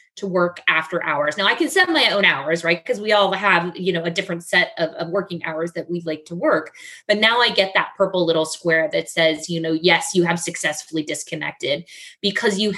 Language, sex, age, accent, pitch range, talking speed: English, female, 20-39, American, 165-205 Hz, 230 wpm